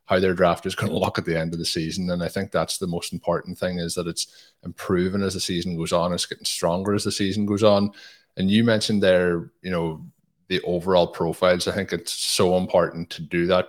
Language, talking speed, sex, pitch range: English, 240 wpm, male, 85-100 Hz